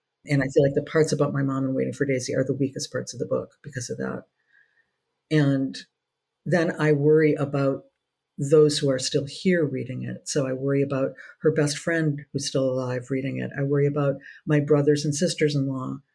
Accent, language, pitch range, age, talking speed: American, English, 140-165 Hz, 50-69, 200 wpm